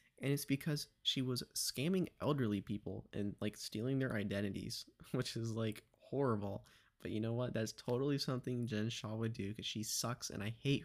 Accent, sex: American, male